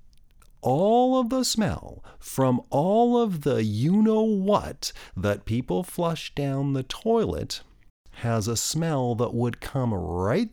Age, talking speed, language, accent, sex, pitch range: 40-59, 125 wpm, English, American, male, 90-135 Hz